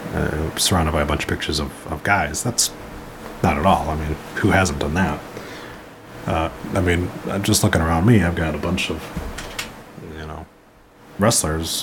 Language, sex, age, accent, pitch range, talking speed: English, male, 30-49, American, 90-120 Hz, 180 wpm